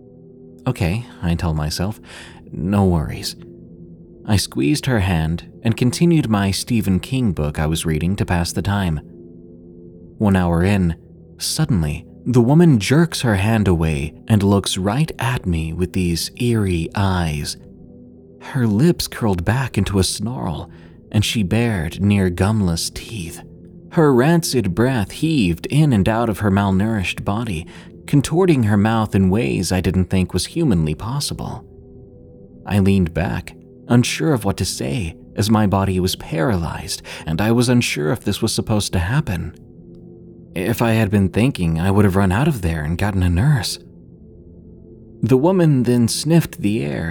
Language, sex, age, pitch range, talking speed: English, male, 30-49, 85-115 Hz, 155 wpm